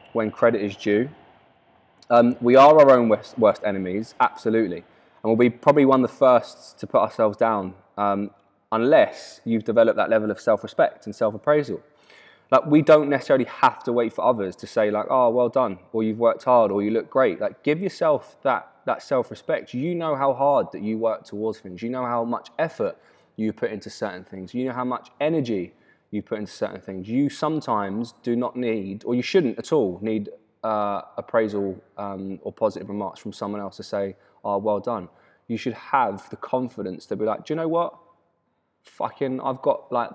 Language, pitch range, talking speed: English, 105-135 Hz, 205 wpm